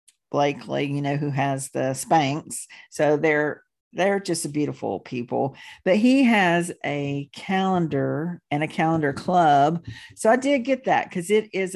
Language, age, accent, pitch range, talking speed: English, 50-69, American, 150-205 Hz, 160 wpm